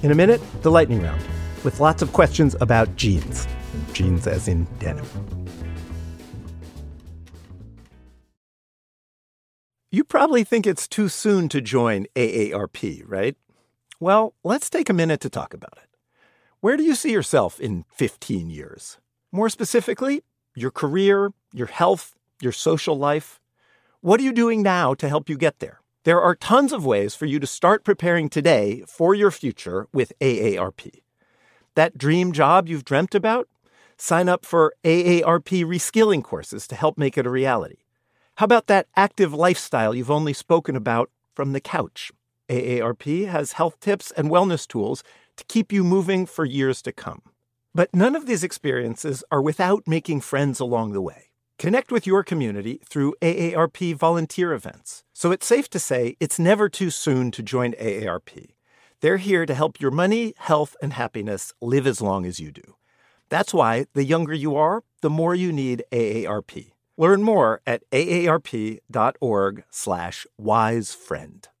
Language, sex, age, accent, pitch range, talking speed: English, male, 50-69, American, 115-180 Hz, 155 wpm